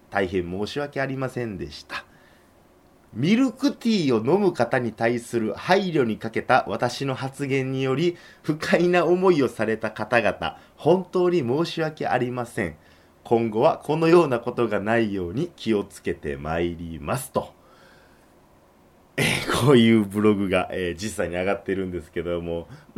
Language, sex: Japanese, male